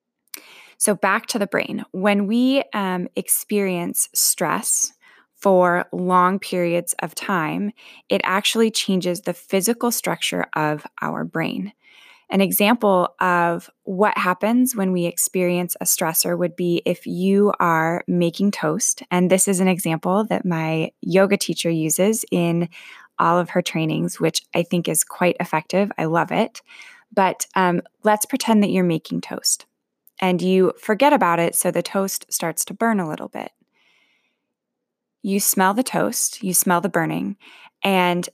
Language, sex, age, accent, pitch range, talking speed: English, female, 20-39, American, 175-215 Hz, 150 wpm